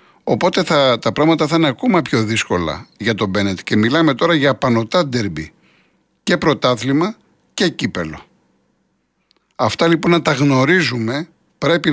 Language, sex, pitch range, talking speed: Greek, male, 115-160 Hz, 140 wpm